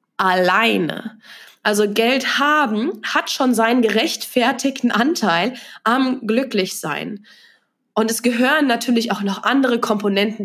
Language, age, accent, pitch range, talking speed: German, 20-39, German, 195-245 Hz, 110 wpm